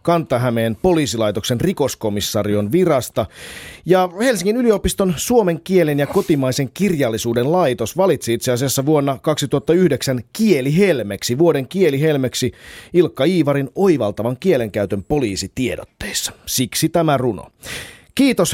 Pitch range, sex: 110-160 Hz, male